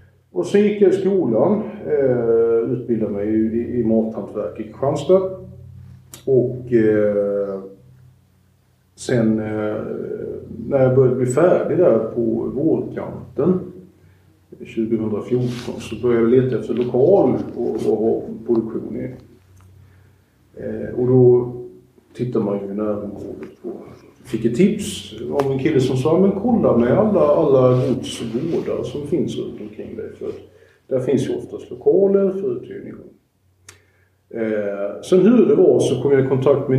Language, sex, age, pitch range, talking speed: English, male, 50-69, 105-130 Hz, 125 wpm